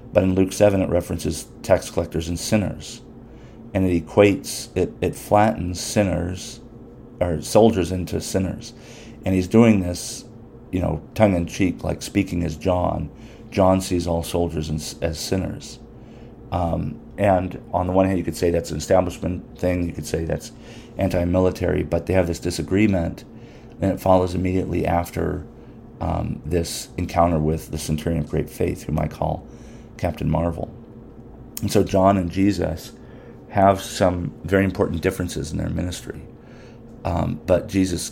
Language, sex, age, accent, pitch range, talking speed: English, male, 40-59, American, 85-105 Hz, 155 wpm